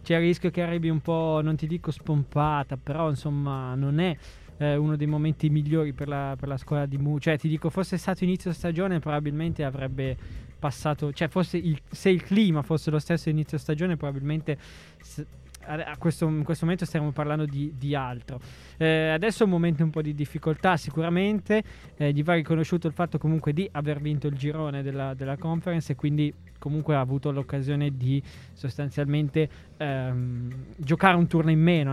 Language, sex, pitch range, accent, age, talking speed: Italian, male, 140-165 Hz, native, 20-39, 180 wpm